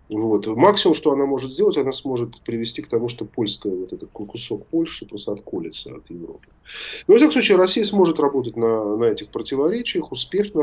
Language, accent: Russian, native